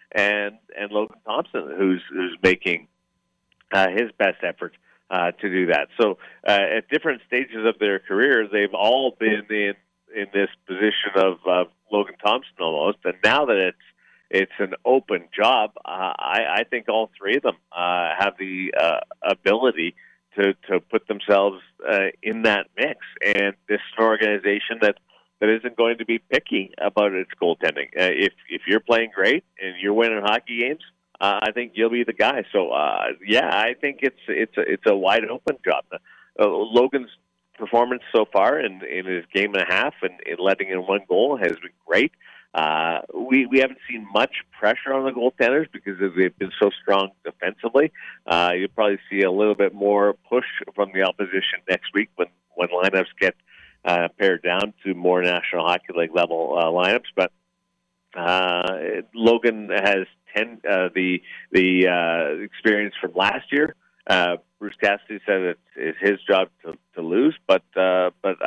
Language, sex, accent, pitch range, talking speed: English, male, American, 90-110 Hz, 175 wpm